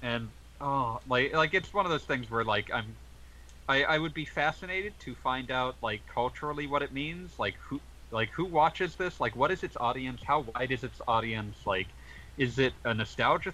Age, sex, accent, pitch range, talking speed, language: 30-49, male, American, 85-140 Hz, 205 wpm, English